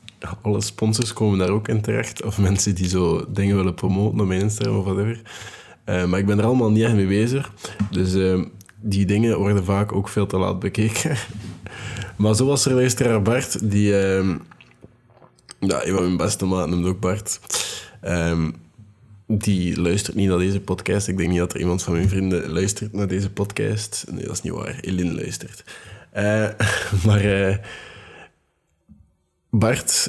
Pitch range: 95-110 Hz